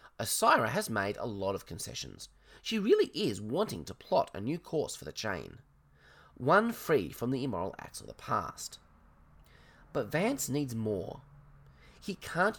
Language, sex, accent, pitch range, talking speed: English, male, Australian, 105-175 Hz, 160 wpm